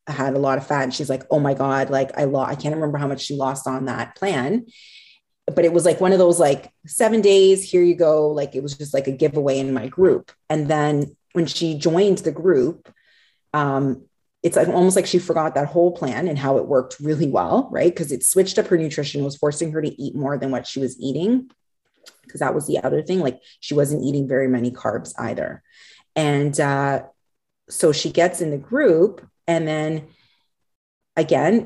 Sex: female